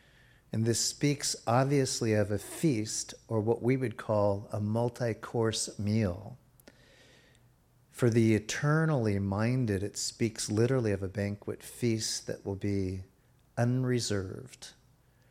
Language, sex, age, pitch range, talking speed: English, male, 50-69, 105-125 Hz, 120 wpm